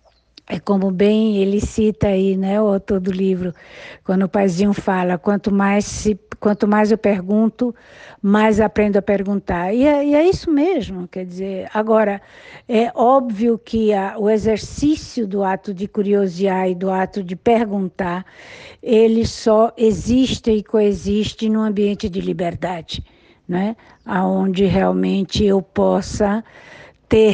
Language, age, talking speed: Portuguese, 60-79, 140 wpm